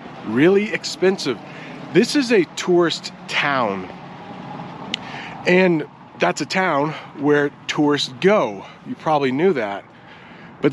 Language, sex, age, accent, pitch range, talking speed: English, male, 30-49, American, 130-170 Hz, 105 wpm